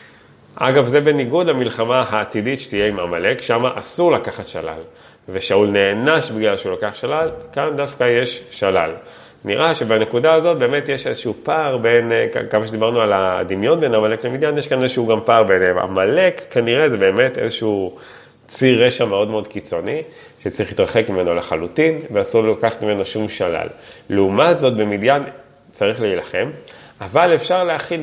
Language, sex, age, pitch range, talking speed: English, male, 30-49, 105-165 Hz, 150 wpm